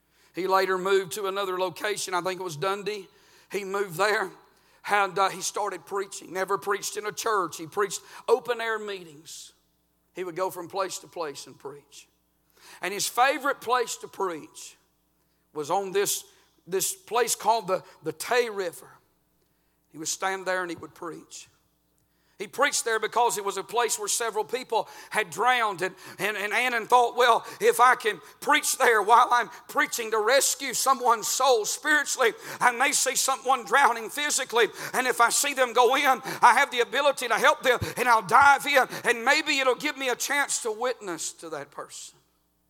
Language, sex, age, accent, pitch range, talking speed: English, male, 50-69, American, 160-235 Hz, 180 wpm